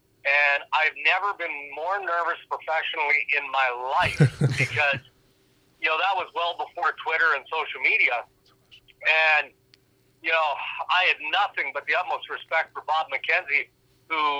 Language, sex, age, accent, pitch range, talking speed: English, male, 50-69, American, 130-160 Hz, 145 wpm